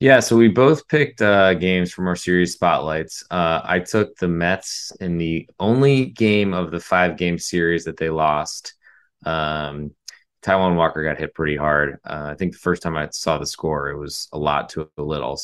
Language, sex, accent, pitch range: English, male, American, 85-105 Hz